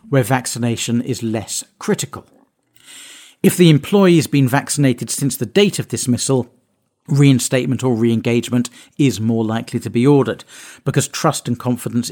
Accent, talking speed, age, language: British, 145 wpm, 50-69, English